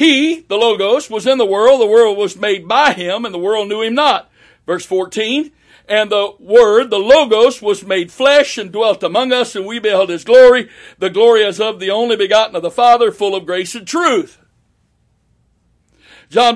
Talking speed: 195 wpm